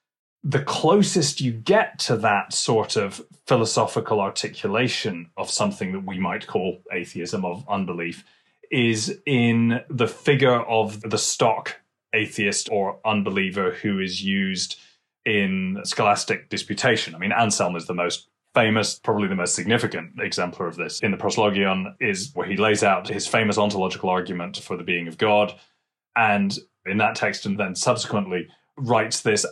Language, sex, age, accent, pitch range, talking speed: English, male, 30-49, British, 95-115 Hz, 150 wpm